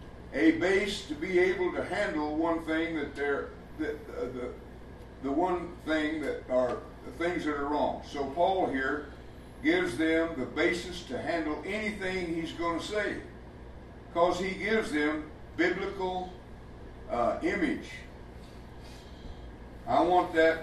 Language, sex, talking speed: English, male, 135 wpm